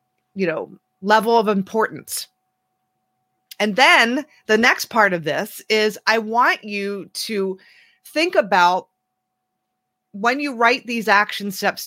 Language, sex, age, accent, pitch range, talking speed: English, female, 30-49, American, 185-245 Hz, 125 wpm